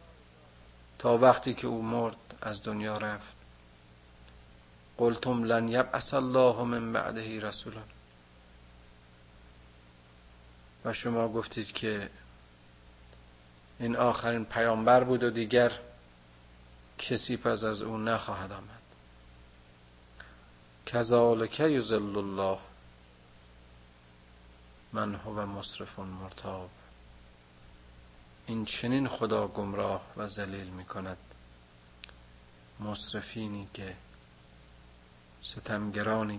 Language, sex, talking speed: Persian, male, 80 wpm